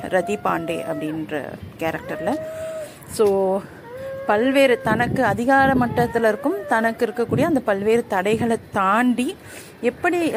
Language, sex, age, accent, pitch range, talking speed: Tamil, female, 30-49, native, 185-240 Hz, 100 wpm